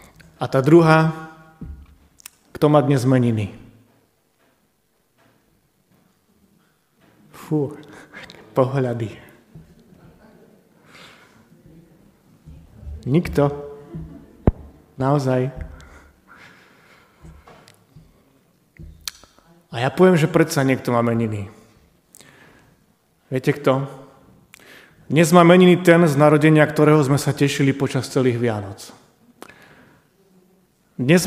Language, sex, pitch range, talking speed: Slovak, male, 130-160 Hz, 65 wpm